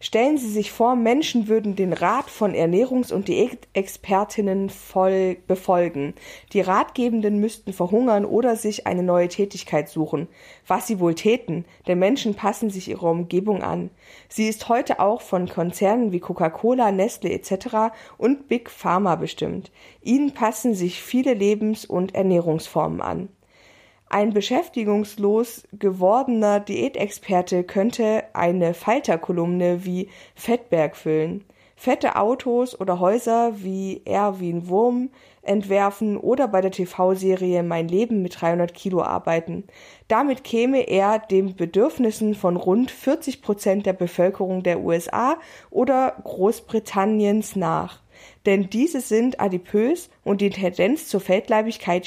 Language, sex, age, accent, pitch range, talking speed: German, female, 50-69, German, 180-225 Hz, 125 wpm